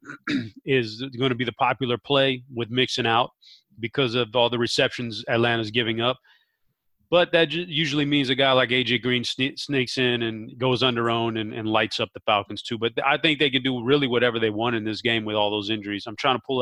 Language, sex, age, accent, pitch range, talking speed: English, male, 30-49, American, 115-135 Hz, 225 wpm